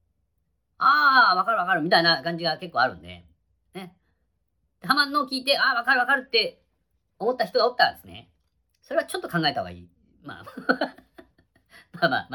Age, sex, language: 40-59, female, Japanese